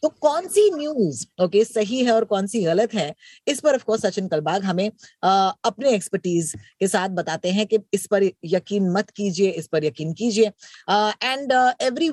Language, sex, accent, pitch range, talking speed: Hindi, female, native, 175-230 Hz, 190 wpm